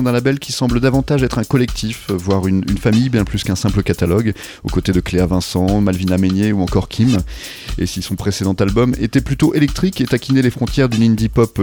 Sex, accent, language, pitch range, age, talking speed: male, French, French, 95-125 Hz, 30-49, 215 wpm